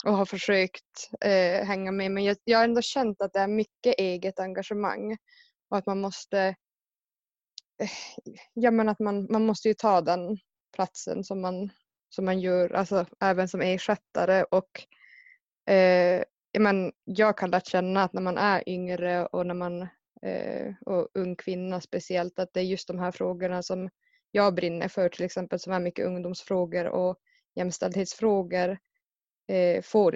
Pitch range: 180-205 Hz